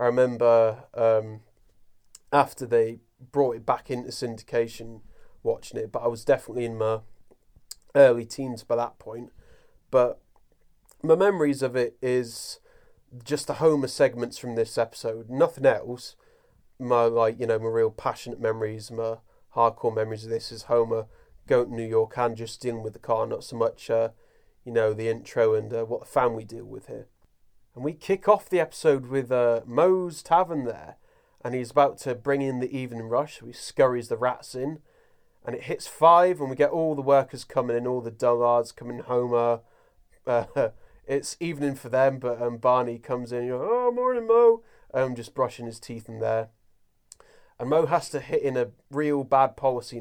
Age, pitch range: 30-49, 115-140 Hz